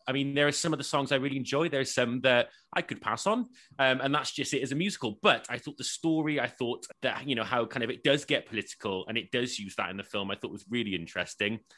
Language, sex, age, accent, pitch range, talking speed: English, male, 30-49, British, 120-150 Hz, 290 wpm